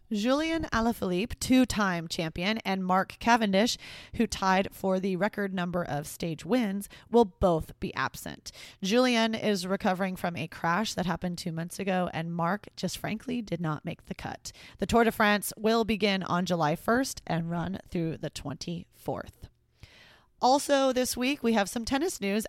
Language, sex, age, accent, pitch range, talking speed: English, female, 30-49, American, 180-230 Hz, 170 wpm